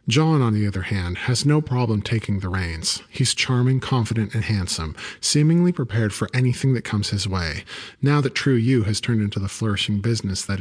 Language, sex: English, male